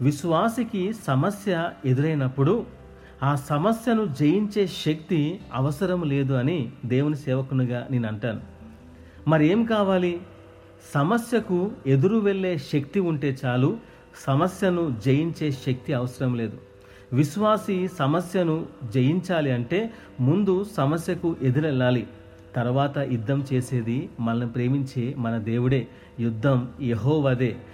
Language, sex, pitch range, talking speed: Telugu, male, 125-170 Hz, 90 wpm